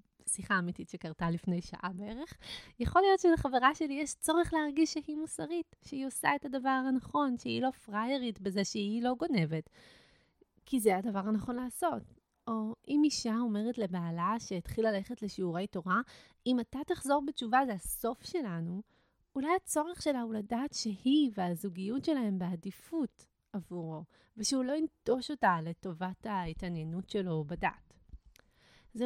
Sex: female